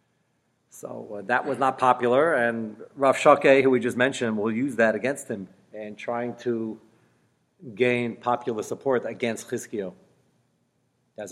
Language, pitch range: English, 110-125 Hz